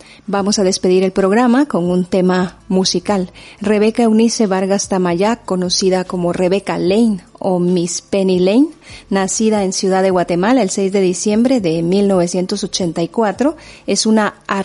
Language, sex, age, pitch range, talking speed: Spanish, female, 40-59, 180-225 Hz, 130 wpm